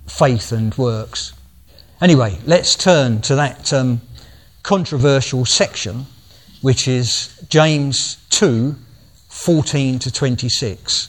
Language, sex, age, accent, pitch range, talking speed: English, male, 50-69, British, 110-140 Hz, 95 wpm